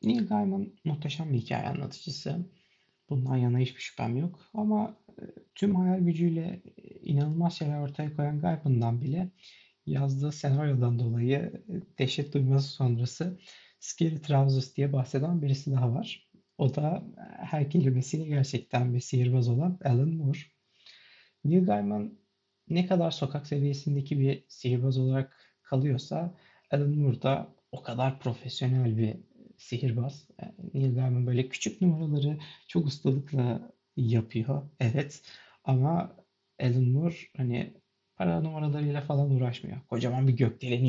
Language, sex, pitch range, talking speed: Turkish, male, 125-170 Hz, 120 wpm